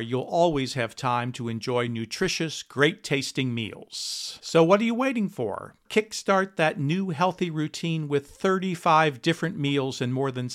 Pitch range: 130-175 Hz